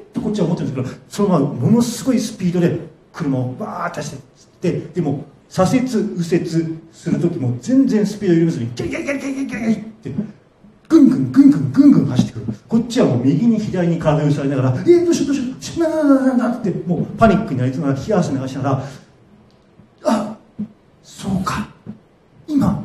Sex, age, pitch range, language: male, 40-59, 145-240 Hz, Japanese